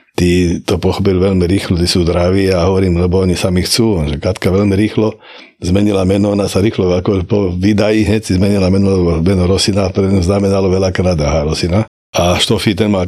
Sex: male